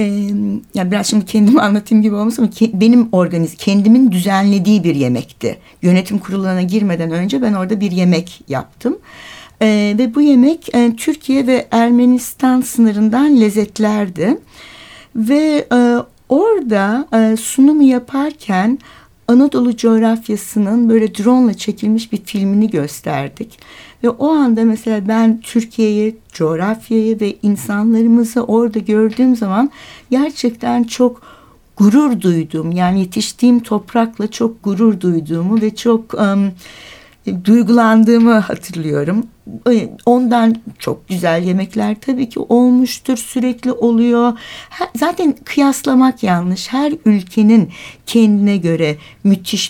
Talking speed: 115 wpm